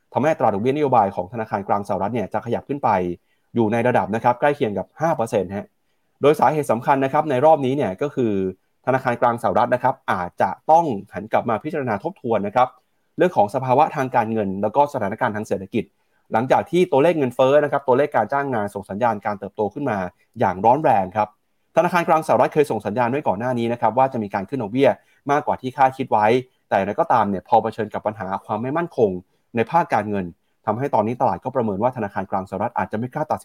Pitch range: 105-145 Hz